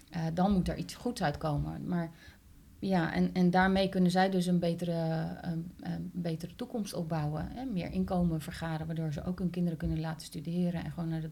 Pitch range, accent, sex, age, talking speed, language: 160-180 Hz, Dutch, female, 30-49, 200 wpm, Dutch